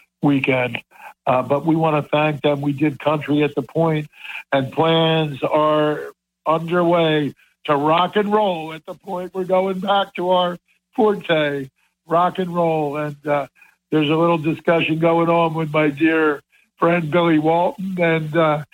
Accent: American